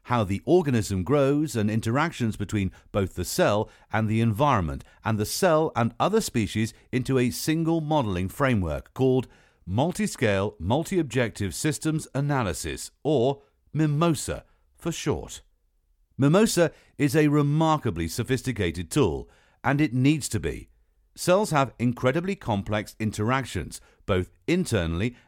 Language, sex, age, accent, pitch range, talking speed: English, male, 50-69, British, 100-145 Hz, 120 wpm